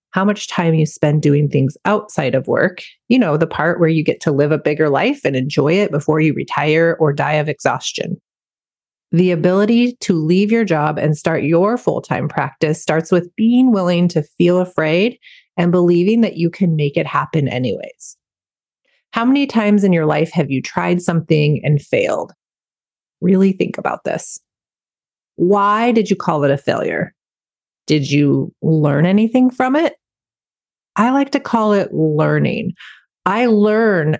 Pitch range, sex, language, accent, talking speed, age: 155-210 Hz, female, English, American, 170 wpm, 30-49